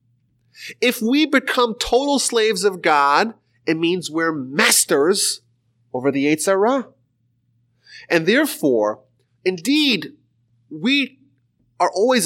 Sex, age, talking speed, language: male, 30-49, 100 wpm, English